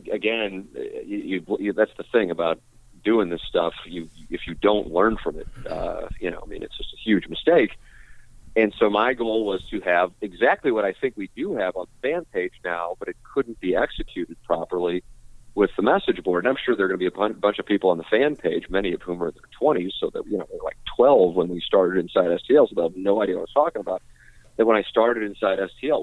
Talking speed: 255 wpm